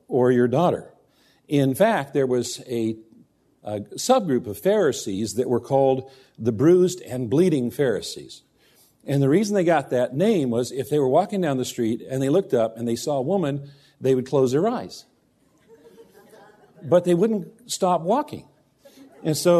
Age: 50-69